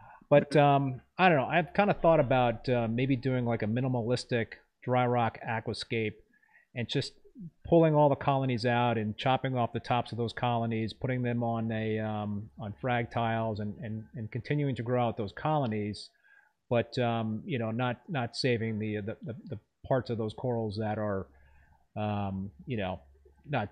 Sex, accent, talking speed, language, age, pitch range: male, American, 180 wpm, English, 30-49, 110-135 Hz